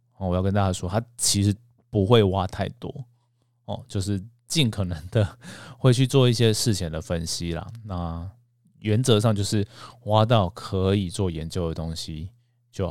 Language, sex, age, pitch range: Chinese, male, 20-39, 90-120 Hz